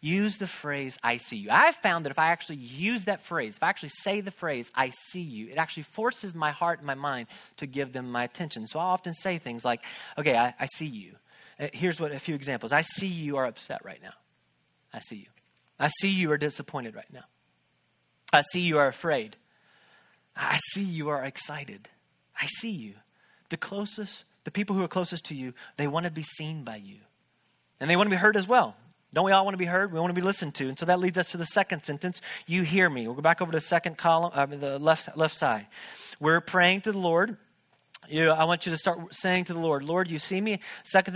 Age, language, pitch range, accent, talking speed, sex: 30-49, English, 150-195 Hz, American, 240 wpm, male